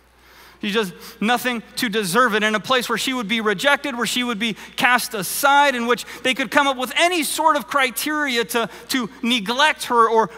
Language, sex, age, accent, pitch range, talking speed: English, male, 40-59, American, 180-225 Hz, 210 wpm